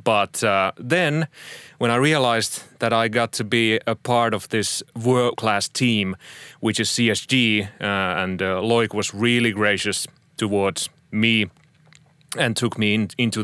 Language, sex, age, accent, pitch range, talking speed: English, male, 30-49, Finnish, 105-125 Hz, 145 wpm